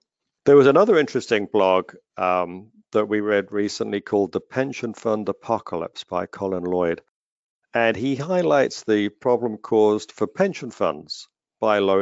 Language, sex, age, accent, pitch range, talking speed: English, male, 50-69, British, 100-120 Hz, 145 wpm